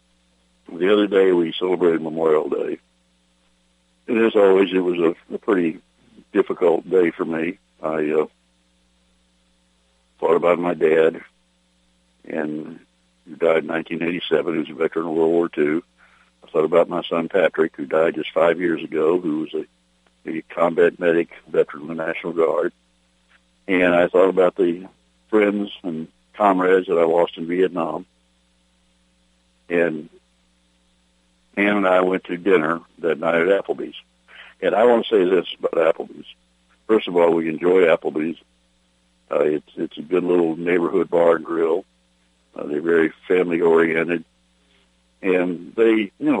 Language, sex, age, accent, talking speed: English, male, 60-79, American, 150 wpm